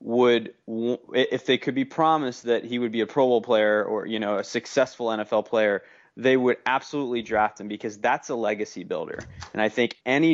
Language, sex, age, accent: English, male, 20-39, American